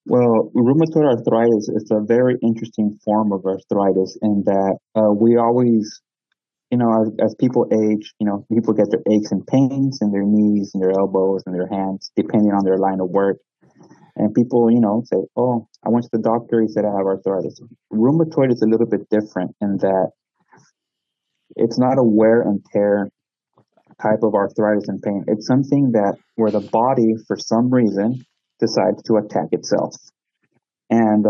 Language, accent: English, American